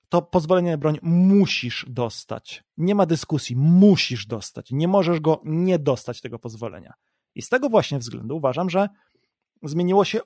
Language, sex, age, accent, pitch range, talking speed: Polish, male, 30-49, native, 135-185 Hz, 160 wpm